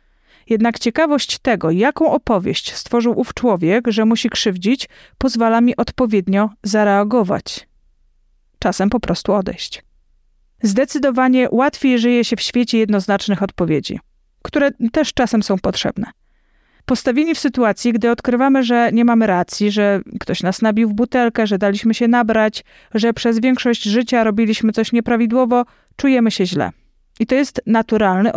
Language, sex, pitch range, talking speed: Polish, female, 205-245 Hz, 140 wpm